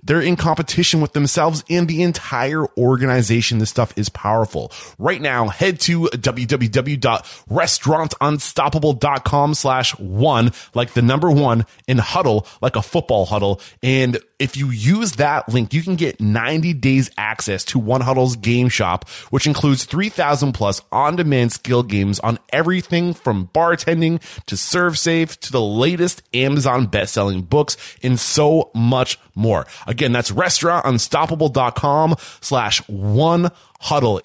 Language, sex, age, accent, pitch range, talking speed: English, male, 30-49, American, 105-150 Hz, 130 wpm